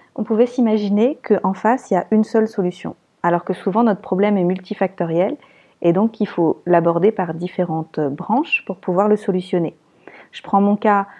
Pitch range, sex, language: 185-230 Hz, female, French